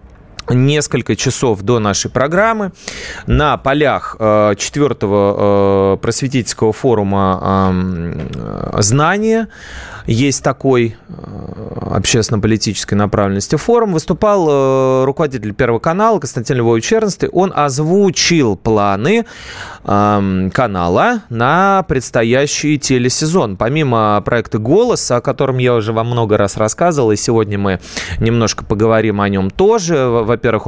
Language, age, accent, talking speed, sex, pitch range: Russian, 30-49, native, 100 wpm, male, 100-135 Hz